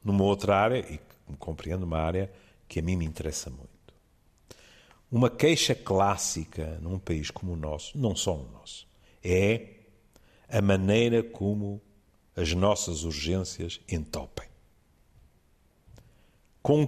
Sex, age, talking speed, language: male, 50-69, 120 wpm, Portuguese